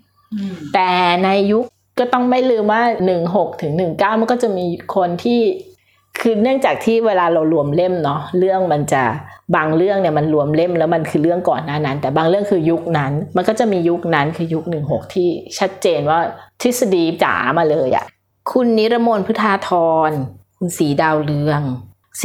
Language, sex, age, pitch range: Thai, female, 20-39, 155-210 Hz